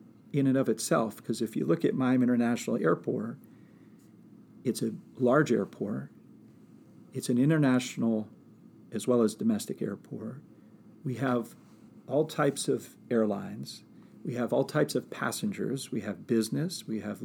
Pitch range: 110-150 Hz